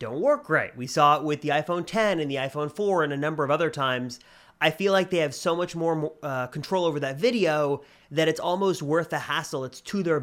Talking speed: 245 wpm